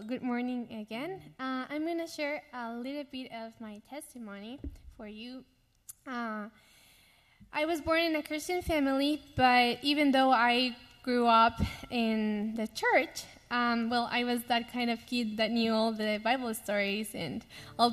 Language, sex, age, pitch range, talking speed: English, female, 10-29, 220-260 Hz, 165 wpm